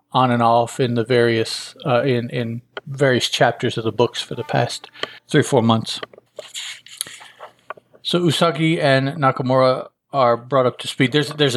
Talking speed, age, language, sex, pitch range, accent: 165 wpm, 40-59, English, male, 110-135 Hz, American